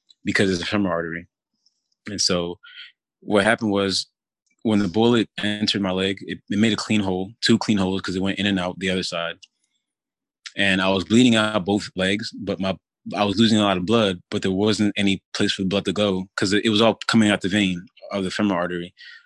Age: 20-39